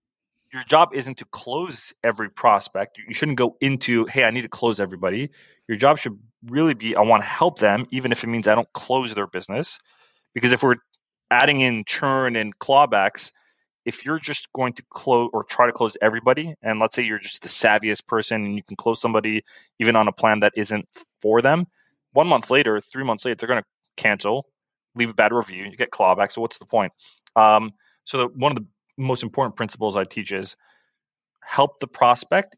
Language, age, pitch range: English, 20-39, 105-125 Hz